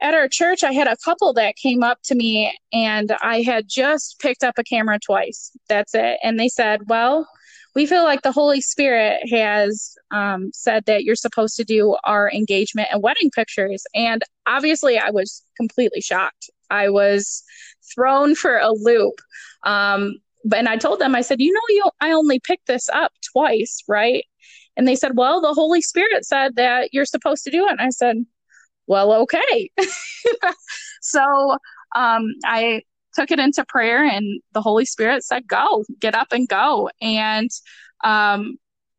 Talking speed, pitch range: 175 wpm, 215-280 Hz